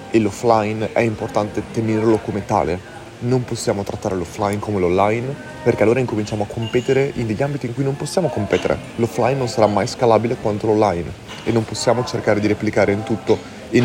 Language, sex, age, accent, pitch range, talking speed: Italian, male, 30-49, native, 105-125 Hz, 180 wpm